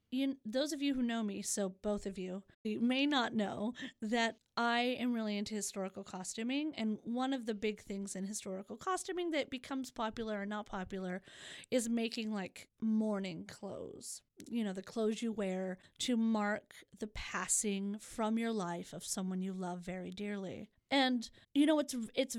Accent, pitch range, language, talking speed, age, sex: American, 205-255 Hz, English, 180 wpm, 30-49, female